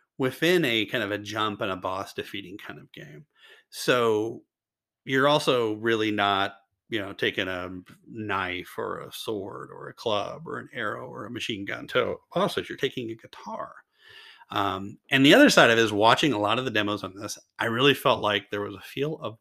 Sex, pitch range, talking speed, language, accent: male, 105-170 Hz, 205 wpm, English, American